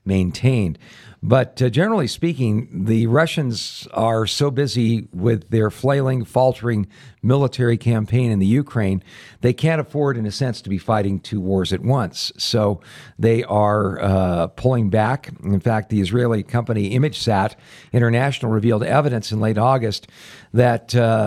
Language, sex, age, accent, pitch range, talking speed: English, male, 50-69, American, 100-125 Hz, 145 wpm